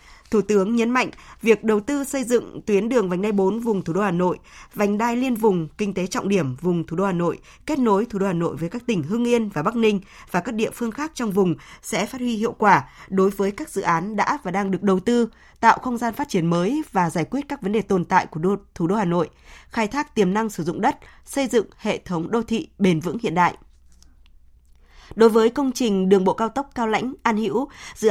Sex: female